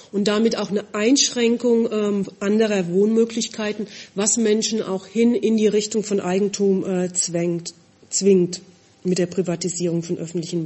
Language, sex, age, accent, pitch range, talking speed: English, female, 40-59, German, 185-220 Hz, 135 wpm